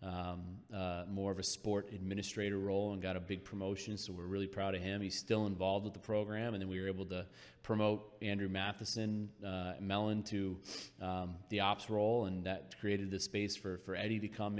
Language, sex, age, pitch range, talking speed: English, male, 30-49, 95-105 Hz, 210 wpm